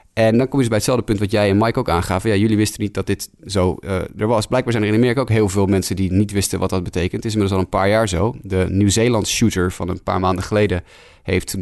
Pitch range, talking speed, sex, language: 95-110 Hz, 290 wpm, male, Dutch